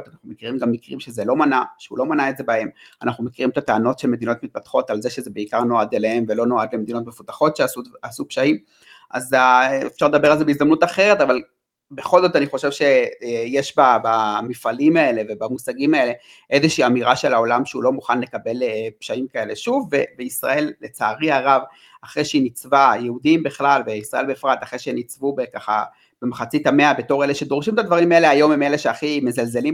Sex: male